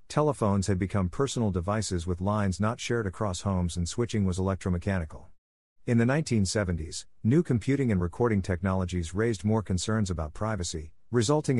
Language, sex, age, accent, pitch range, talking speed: English, male, 50-69, American, 90-115 Hz, 150 wpm